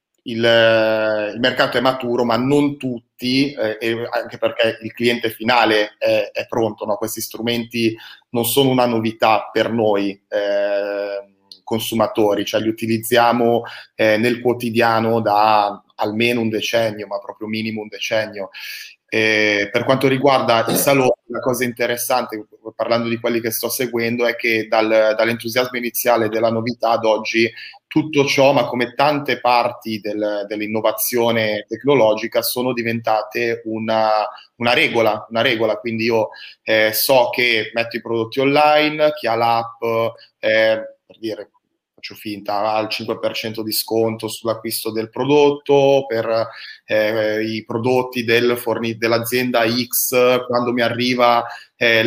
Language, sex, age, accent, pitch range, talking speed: Italian, male, 30-49, native, 110-125 Hz, 135 wpm